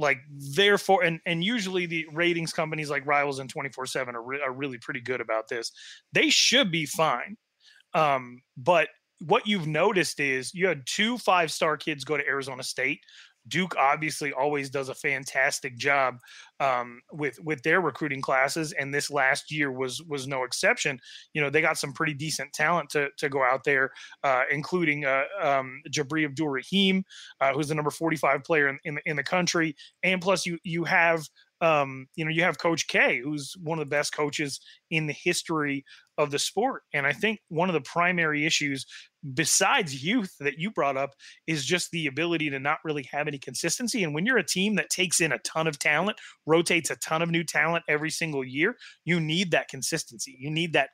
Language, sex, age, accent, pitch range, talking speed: English, male, 30-49, American, 140-170 Hz, 200 wpm